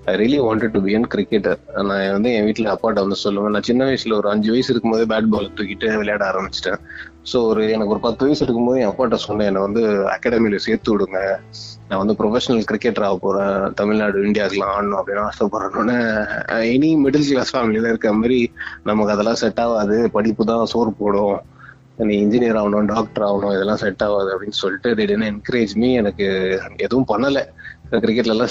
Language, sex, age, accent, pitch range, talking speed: Tamil, male, 20-39, native, 105-130 Hz, 190 wpm